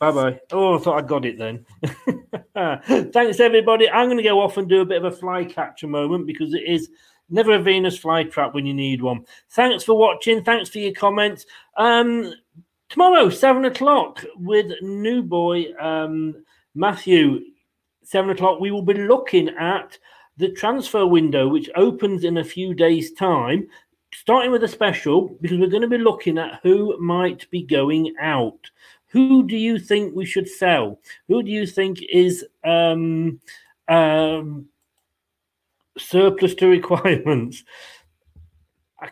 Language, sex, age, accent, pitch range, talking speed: English, male, 40-59, British, 155-220 Hz, 160 wpm